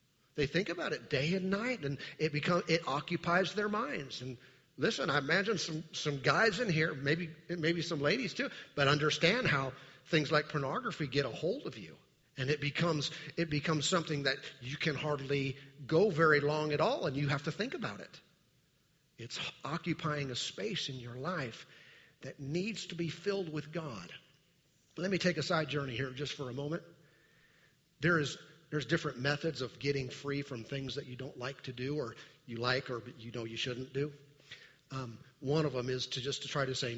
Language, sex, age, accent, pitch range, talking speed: English, male, 40-59, American, 135-160 Hz, 200 wpm